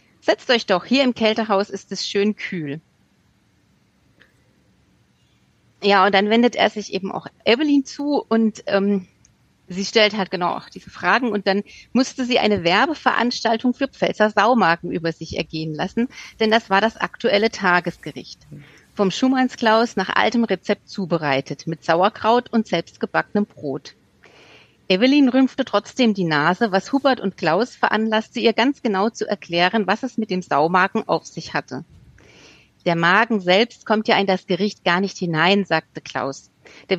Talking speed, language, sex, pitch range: 155 wpm, German, female, 175-230 Hz